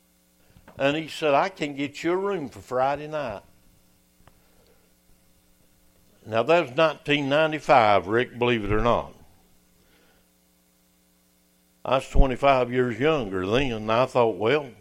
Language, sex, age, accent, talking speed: English, male, 60-79, American, 125 wpm